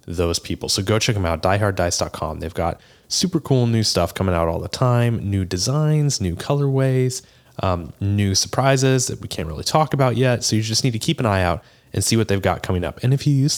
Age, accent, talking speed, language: 30-49, American, 235 wpm, English